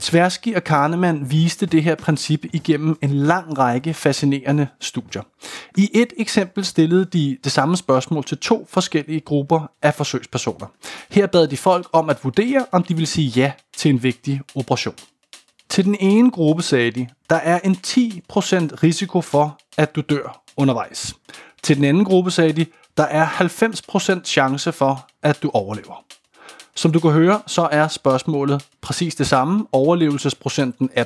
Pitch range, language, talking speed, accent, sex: 140-180 Hz, Danish, 165 wpm, native, male